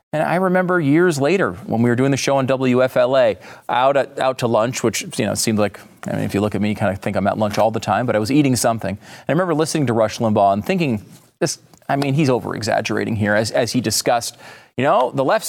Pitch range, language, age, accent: 120-175 Hz, English, 30-49, American